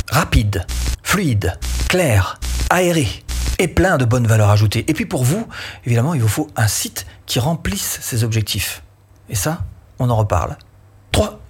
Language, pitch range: French, 110-145 Hz